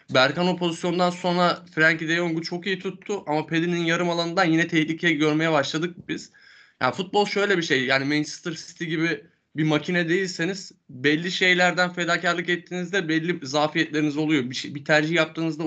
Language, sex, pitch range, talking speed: Turkish, male, 150-175 Hz, 165 wpm